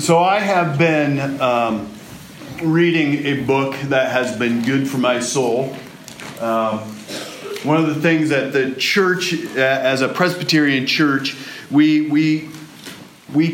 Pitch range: 135-180 Hz